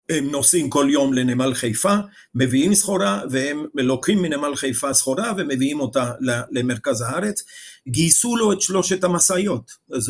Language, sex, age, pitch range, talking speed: Hebrew, male, 50-69, 130-175 Hz, 135 wpm